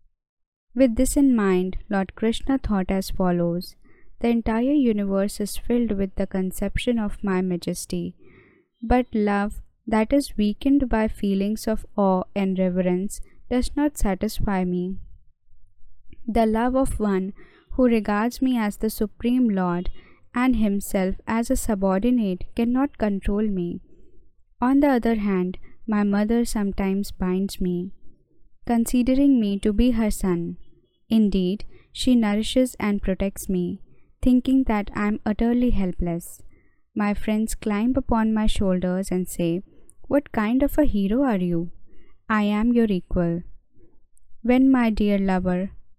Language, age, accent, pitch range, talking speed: Hindi, 20-39, native, 185-235 Hz, 135 wpm